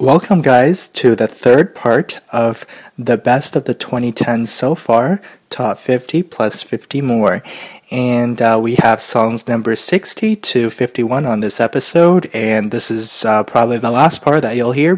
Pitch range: 115-145 Hz